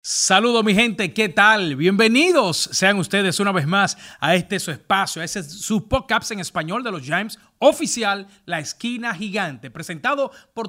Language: English